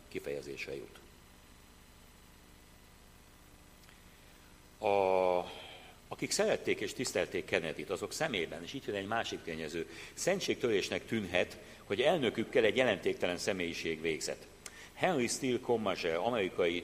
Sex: male